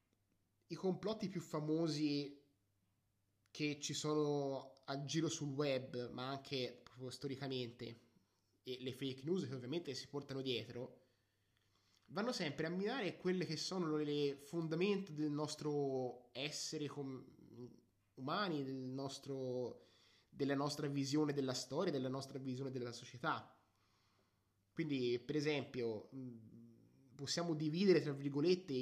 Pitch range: 115-150 Hz